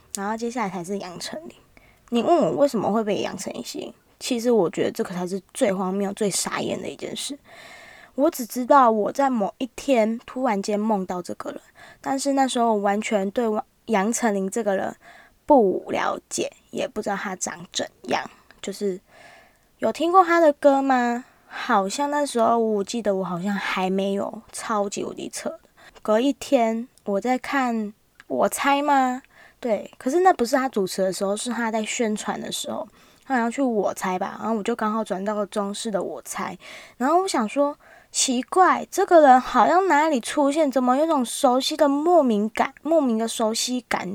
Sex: female